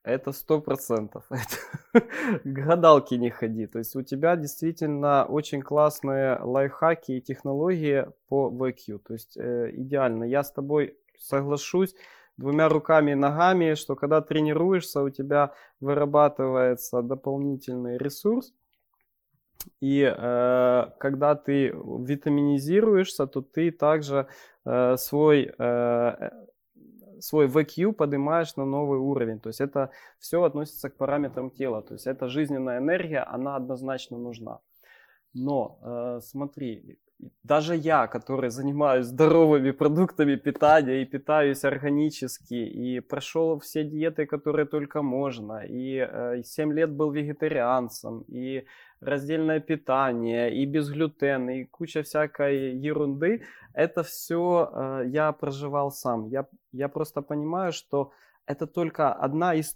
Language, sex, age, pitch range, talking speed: Ukrainian, male, 20-39, 130-155 Hz, 120 wpm